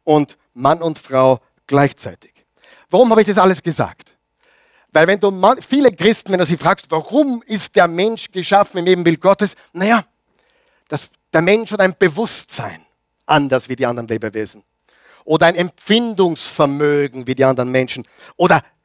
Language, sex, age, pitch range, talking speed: German, male, 50-69, 135-205 Hz, 150 wpm